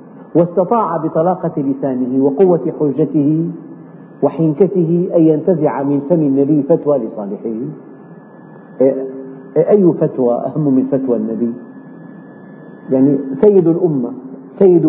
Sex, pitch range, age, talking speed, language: male, 135-180 Hz, 50-69, 90 wpm, Arabic